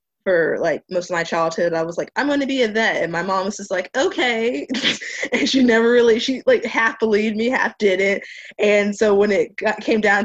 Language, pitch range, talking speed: English, 165-210 Hz, 235 wpm